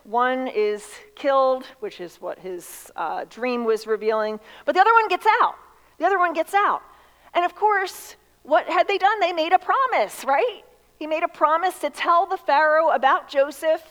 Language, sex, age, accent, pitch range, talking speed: English, female, 40-59, American, 220-310 Hz, 190 wpm